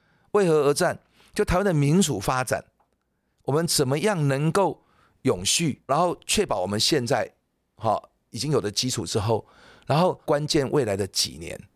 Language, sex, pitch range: Chinese, male, 110-155 Hz